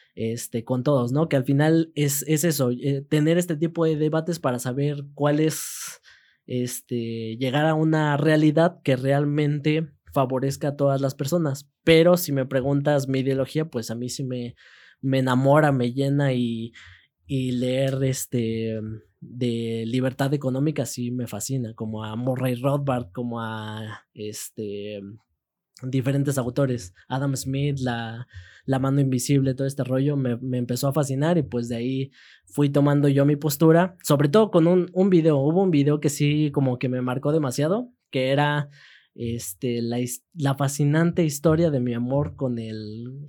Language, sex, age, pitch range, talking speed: Spanish, male, 20-39, 125-150 Hz, 160 wpm